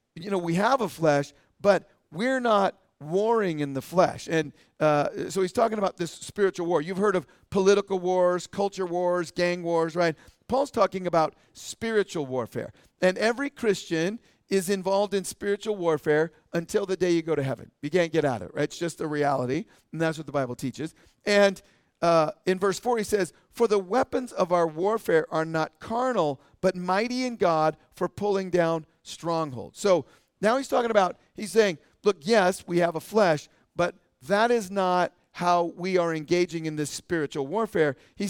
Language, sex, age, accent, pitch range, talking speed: English, male, 50-69, American, 160-200 Hz, 185 wpm